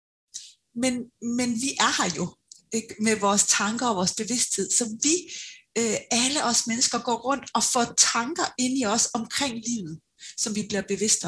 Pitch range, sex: 200-250 Hz, female